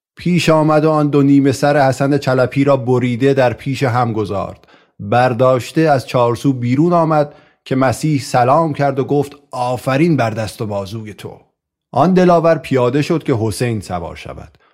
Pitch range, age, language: 120-145 Hz, 30-49, Persian